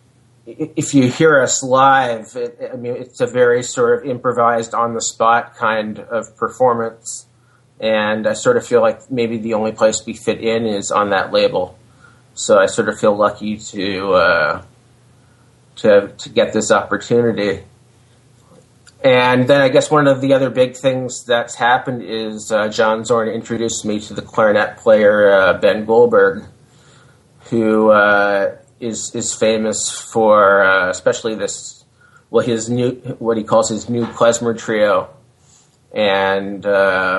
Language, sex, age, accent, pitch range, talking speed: English, male, 30-49, American, 105-125 Hz, 150 wpm